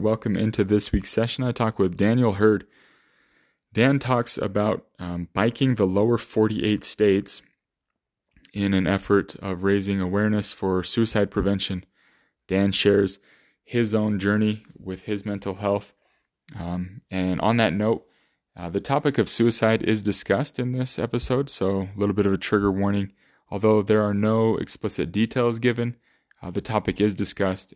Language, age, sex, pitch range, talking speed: English, 20-39, male, 95-110 Hz, 155 wpm